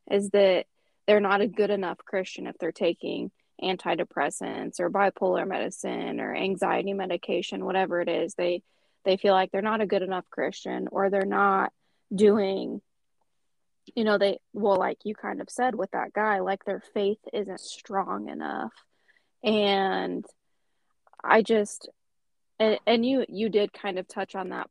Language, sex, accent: English, female, American